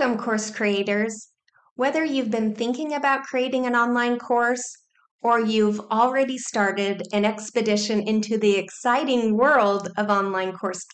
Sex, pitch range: female, 195-245 Hz